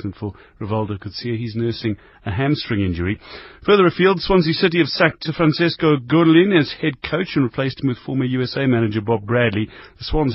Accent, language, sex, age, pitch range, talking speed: British, English, male, 40-59, 110-145 Hz, 175 wpm